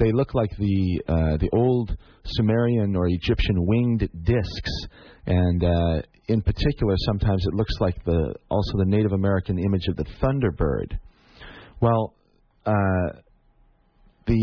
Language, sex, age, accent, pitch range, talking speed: English, male, 40-59, American, 85-110 Hz, 135 wpm